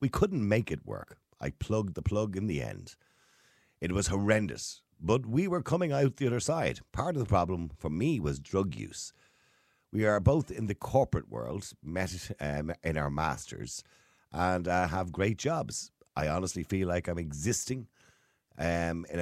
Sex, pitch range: male, 75-110 Hz